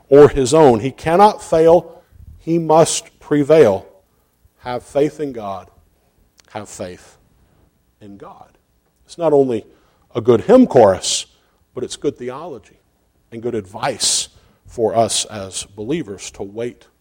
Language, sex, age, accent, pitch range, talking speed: English, male, 50-69, American, 110-165 Hz, 130 wpm